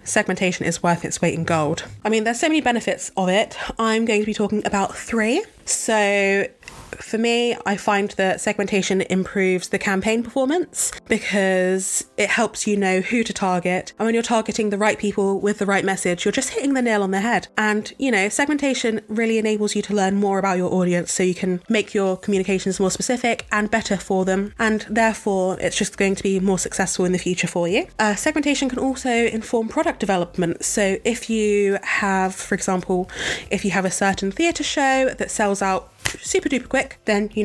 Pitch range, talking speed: 185-220 Hz, 205 wpm